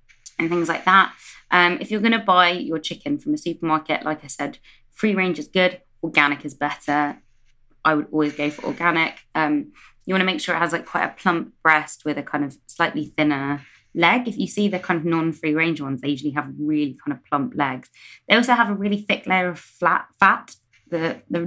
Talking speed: 220 wpm